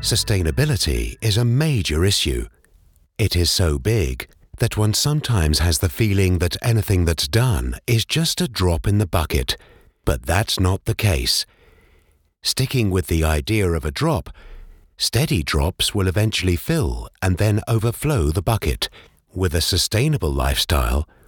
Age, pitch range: 50-69, 85-120 Hz